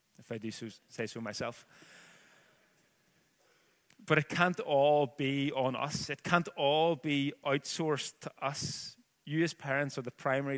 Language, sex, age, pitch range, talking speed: English, male, 20-39, 120-140 Hz, 155 wpm